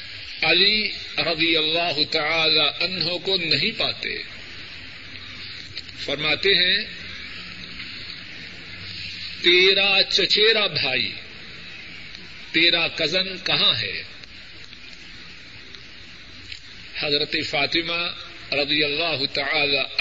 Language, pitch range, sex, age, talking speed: Urdu, 115-185 Hz, male, 50-69, 65 wpm